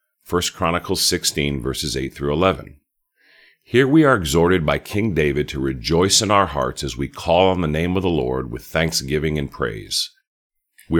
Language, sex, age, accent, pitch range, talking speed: English, male, 50-69, American, 75-110 Hz, 170 wpm